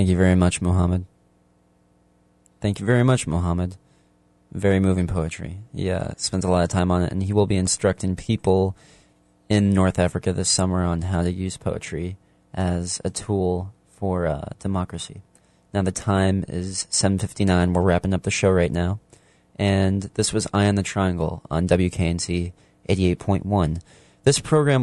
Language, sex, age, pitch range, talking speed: English, male, 20-39, 90-100 Hz, 160 wpm